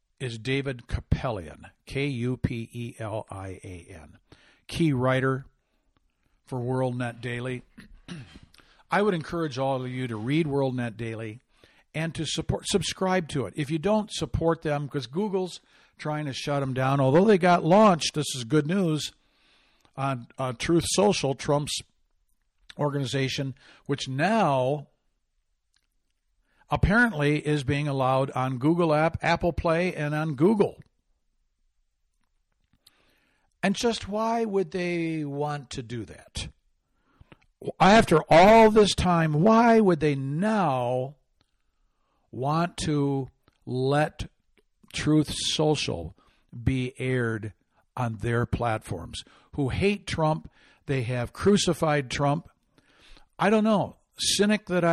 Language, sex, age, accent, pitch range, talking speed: English, male, 60-79, American, 125-165 Hz, 115 wpm